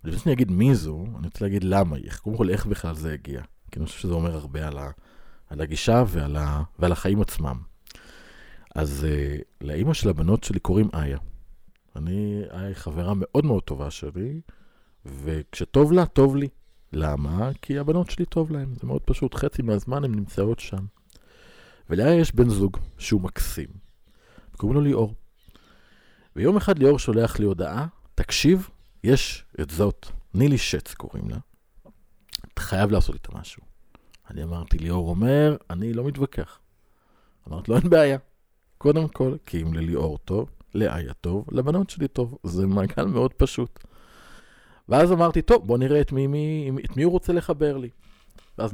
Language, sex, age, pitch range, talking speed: Hebrew, male, 50-69, 80-135 Hz, 165 wpm